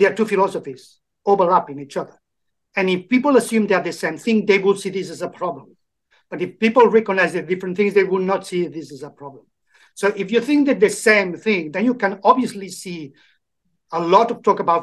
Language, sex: English, male